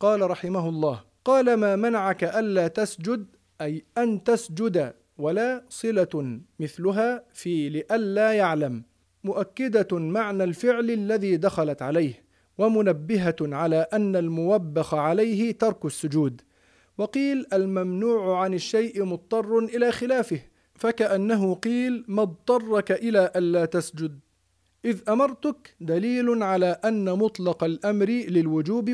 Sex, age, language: male, 40-59, Arabic